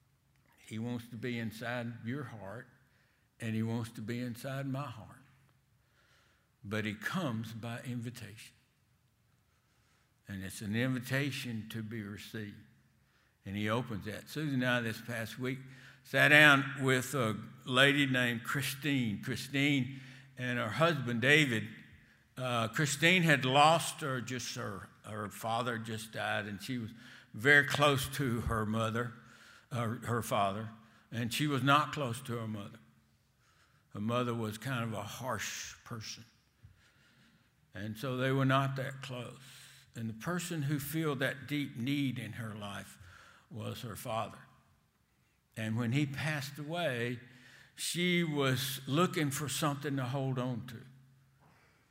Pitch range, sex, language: 115-135 Hz, male, English